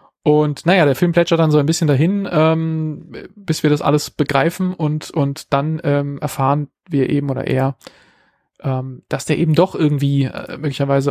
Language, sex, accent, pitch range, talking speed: German, male, German, 140-160 Hz, 180 wpm